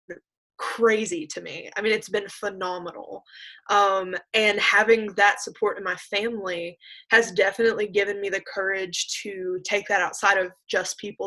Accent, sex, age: American, female, 20-39